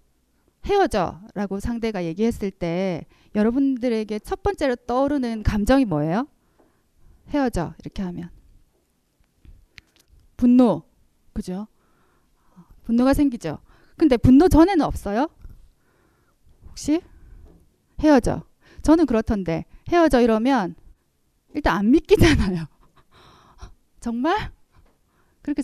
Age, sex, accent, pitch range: 20-39, female, native, 210-290 Hz